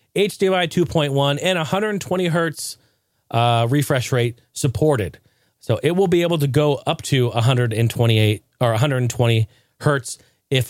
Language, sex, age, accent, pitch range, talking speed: English, male, 30-49, American, 115-145 Hz, 130 wpm